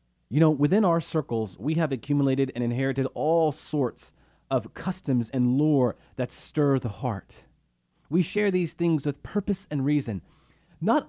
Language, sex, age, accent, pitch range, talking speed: English, male, 40-59, American, 105-155 Hz, 155 wpm